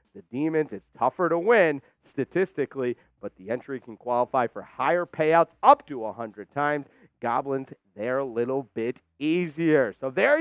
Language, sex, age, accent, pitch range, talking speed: English, male, 40-59, American, 140-220 Hz, 155 wpm